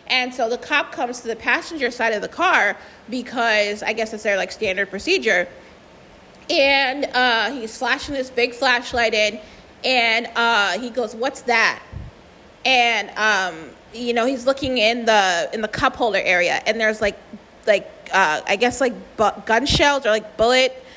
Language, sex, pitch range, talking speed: English, female, 230-305 Hz, 175 wpm